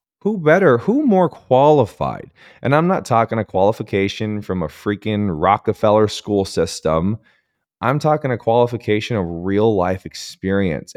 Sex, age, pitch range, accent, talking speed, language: male, 30-49, 90-120 Hz, American, 135 wpm, English